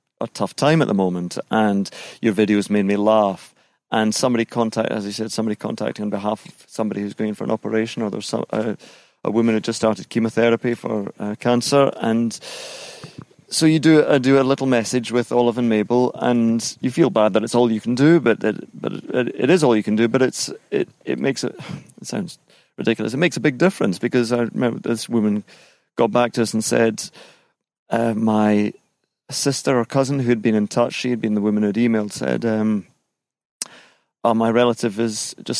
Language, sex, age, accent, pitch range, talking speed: English, male, 30-49, British, 110-120 Hz, 210 wpm